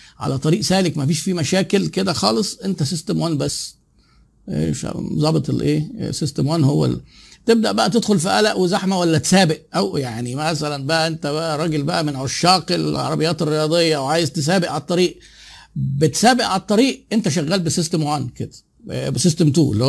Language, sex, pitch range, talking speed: Arabic, male, 150-190 Hz, 170 wpm